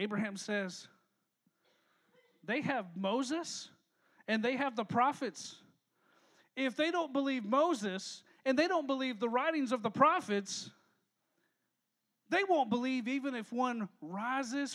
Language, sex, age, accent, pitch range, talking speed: English, male, 40-59, American, 185-260 Hz, 125 wpm